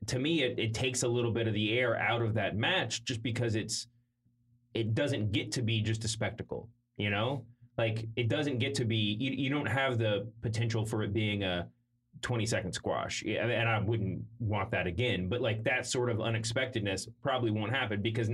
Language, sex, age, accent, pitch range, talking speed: English, male, 20-39, American, 100-120 Hz, 210 wpm